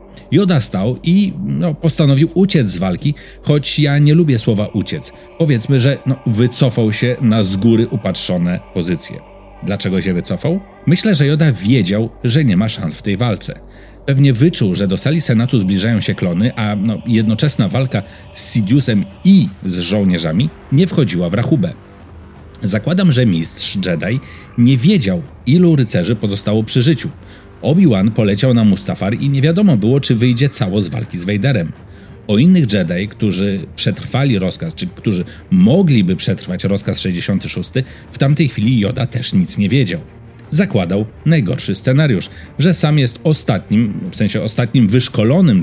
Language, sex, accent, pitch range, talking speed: Polish, male, native, 105-150 Hz, 155 wpm